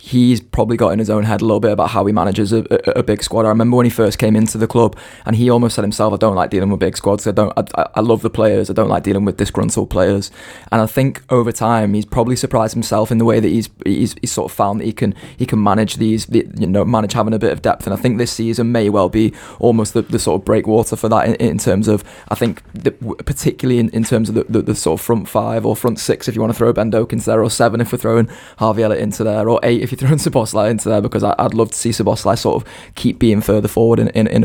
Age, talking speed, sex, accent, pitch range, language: 20-39, 290 wpm, male, British, 110-120 Hz, English